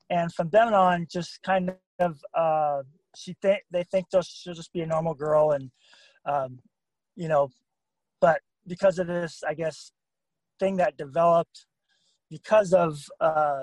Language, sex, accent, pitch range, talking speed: English, male, American, 155-195 Hz, 150 wpm